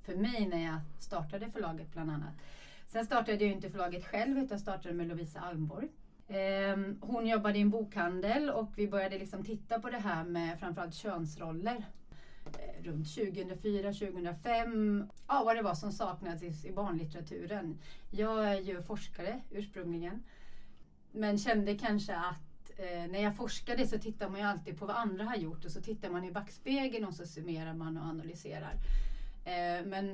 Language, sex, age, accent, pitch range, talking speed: Swedish, female, 30-49, native, 170-210 Hz, 160 wpm